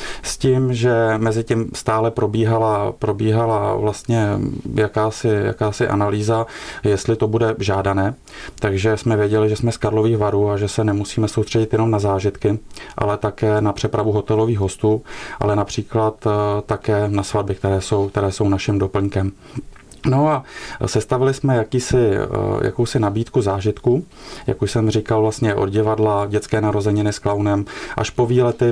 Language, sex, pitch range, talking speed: Czech, male, 100-115 Hz, 150 wpm